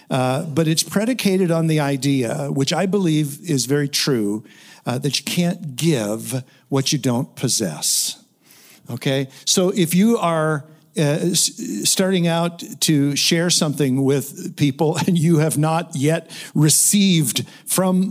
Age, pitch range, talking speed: 60-79, 145-180 Hz, 140 wpm